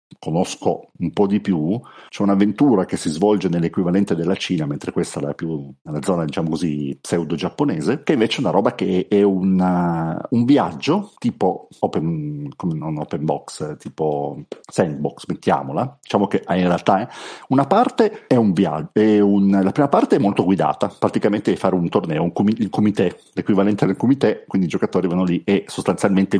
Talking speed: 175 wpm